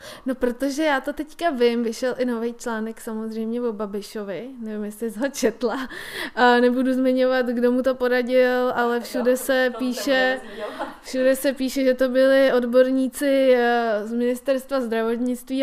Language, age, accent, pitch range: Czech, 20-39, native, 225-260 Hz